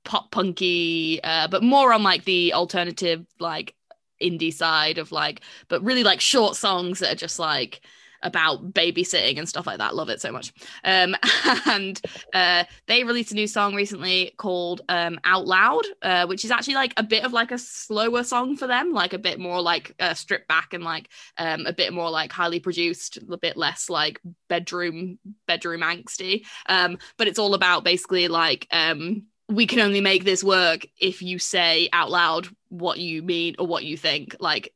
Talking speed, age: 195 wpm, 20-39